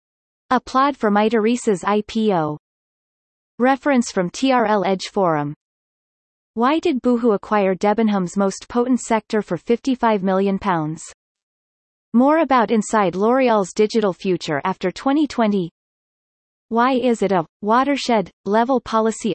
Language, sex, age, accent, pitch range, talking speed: English, female, 30-49, American, 185-240 Hz, 105 wpm